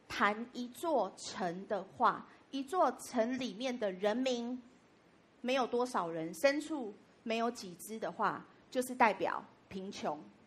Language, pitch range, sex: Chinese, 205-275 Hz, female